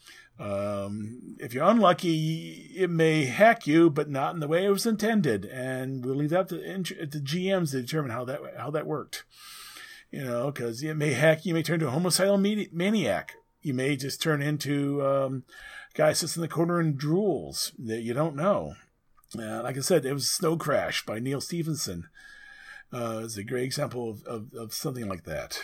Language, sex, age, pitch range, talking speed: English, male, 40-59, 135-185 Hz, 195 wpm